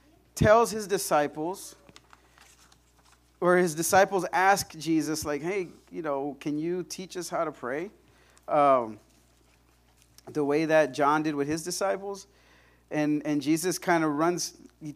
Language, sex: English, male